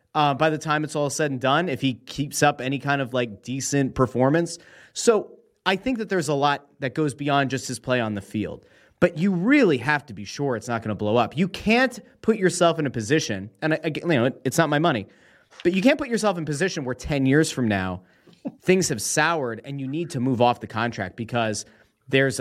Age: 30-49